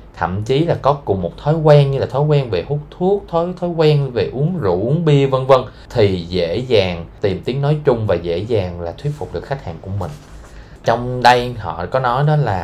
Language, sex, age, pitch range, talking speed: Vietnamese, male, 20-39, 90-125 Hz, 235 wpm